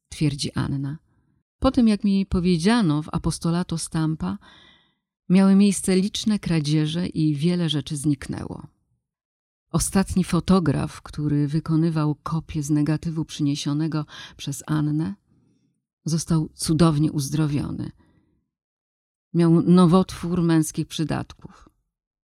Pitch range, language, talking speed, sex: 155-185 Hz, Polish, 95 wpm, female